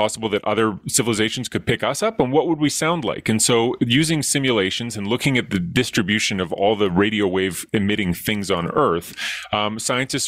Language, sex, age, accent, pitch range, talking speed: English, male, 30-49, American, 105-140 Hz, 200 wpm